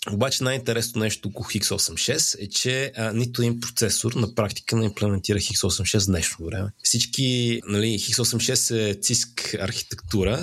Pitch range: 95-115 Hz